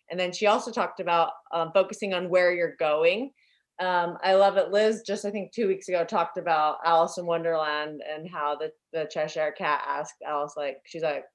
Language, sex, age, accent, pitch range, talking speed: English, female, 20-39, American, 165-210 Hz, 205 wpm